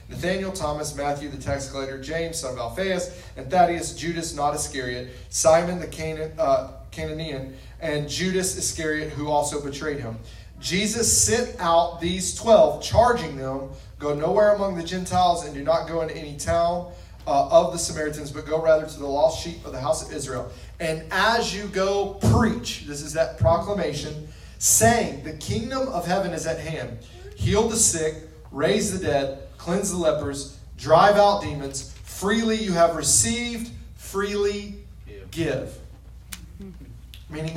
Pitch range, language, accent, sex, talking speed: 145-185 Hz, English, American, male, 155 wpm